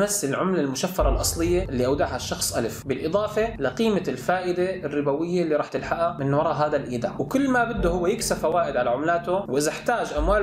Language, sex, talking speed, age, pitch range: Arabic, male, 175 wpm, 20-39, 140-185 Hz